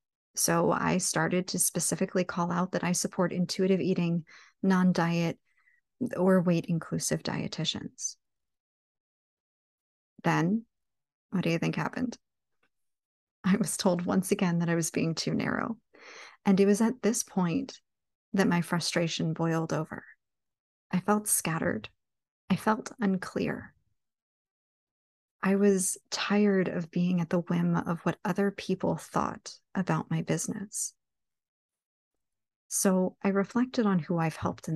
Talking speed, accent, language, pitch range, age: 130 wpm, American, English, 170-205 Hz, 30-49